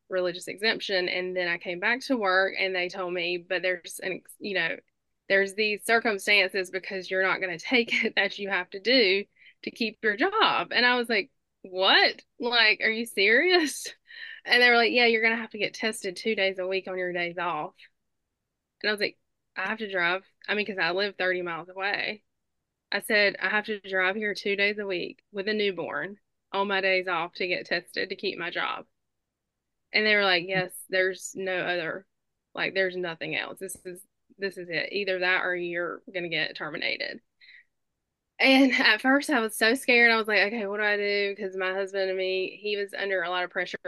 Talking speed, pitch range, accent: 215 wpm, 185-215 Hz, American